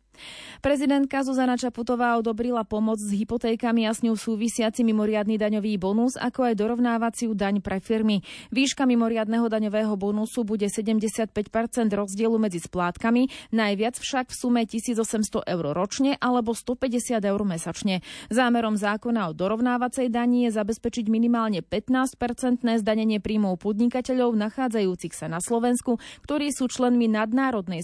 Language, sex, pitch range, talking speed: Slovak, female, 205-245 Hz, 130 wpm